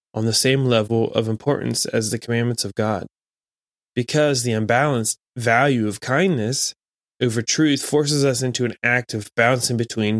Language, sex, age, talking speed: English, male, 20-39, 160 wpm